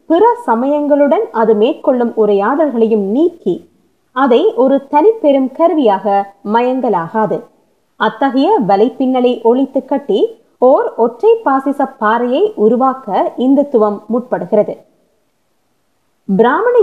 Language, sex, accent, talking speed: Tamil, female, native, 35 wpm